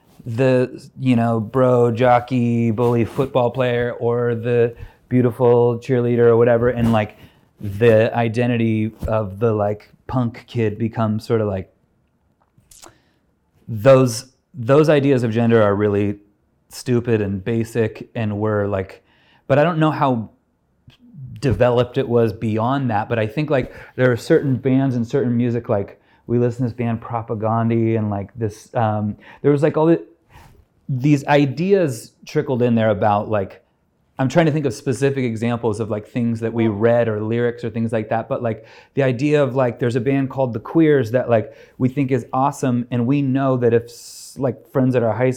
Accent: American